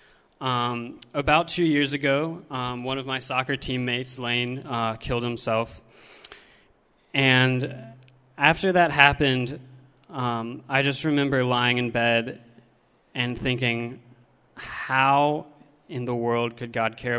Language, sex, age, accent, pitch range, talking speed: English, male, 20-39, American, 120-140 Hz, 120 wpm